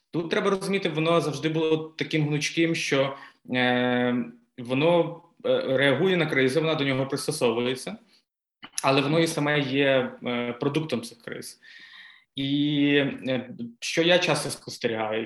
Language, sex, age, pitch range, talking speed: Ukrainian, male, 20-39, 125-160 Hz, 120 wpm